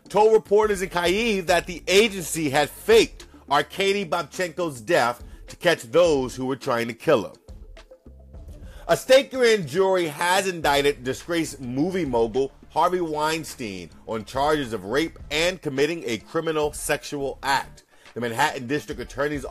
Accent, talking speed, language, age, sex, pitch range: American, 140 wpm, English, 40-59, male, 120-175 Hz